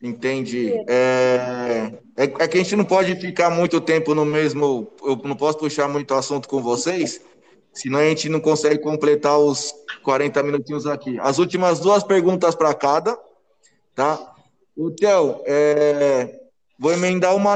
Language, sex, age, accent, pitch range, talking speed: Portuguese, male, 20-39, Brazilian, 150-180 Hz, 155 wpm